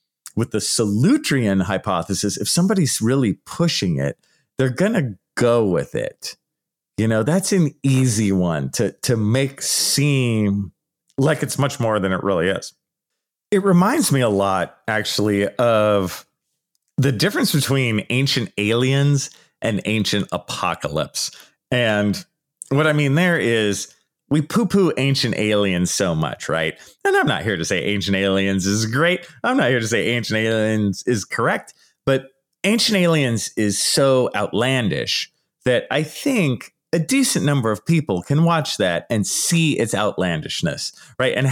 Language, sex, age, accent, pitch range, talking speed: English, male, 40-59, American, 105-155 Hz, 150 wpm